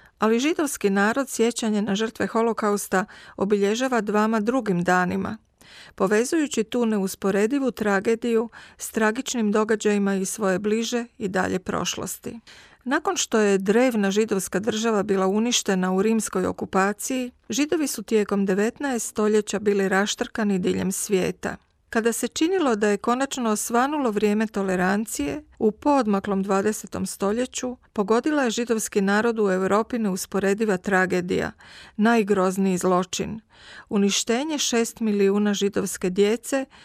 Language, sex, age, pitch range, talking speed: Croatian, female, 40-59, 195-235 Hz, 115 wpm